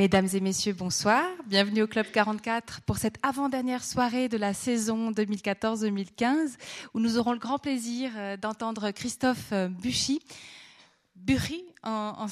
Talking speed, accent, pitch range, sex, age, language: 135 wpm, French, 215-260 Hz, female, 20-39, French